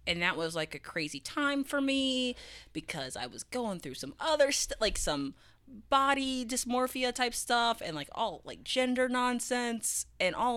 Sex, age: female, 20-39